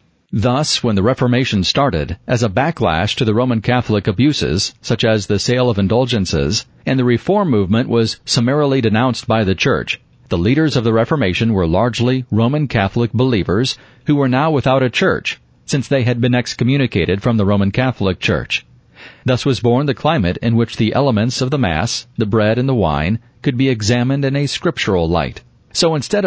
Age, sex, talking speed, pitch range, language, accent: 40-59, male, 185 wpm, 110-135 Hz, English, American